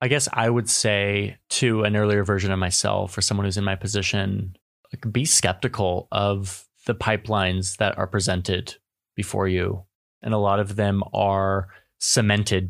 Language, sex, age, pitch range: English, male, 20-39, 95-110 Hz